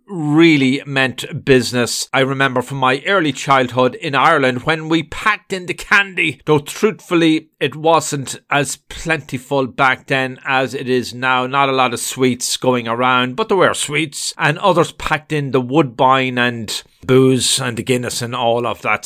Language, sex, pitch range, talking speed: English, male, 125-155 Hz, 175 wpm